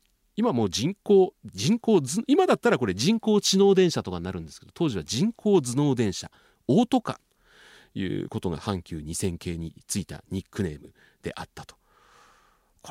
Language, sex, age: Japanese, male, 40-59